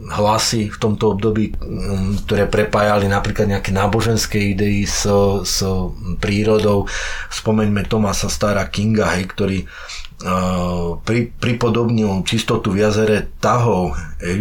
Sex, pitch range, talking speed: male, 95-120 Hz, 115 wpm